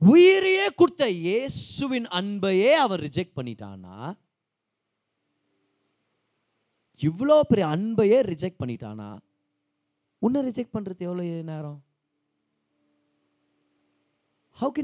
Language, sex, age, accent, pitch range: Tamil, male, 30-49, native, 130-210 Hz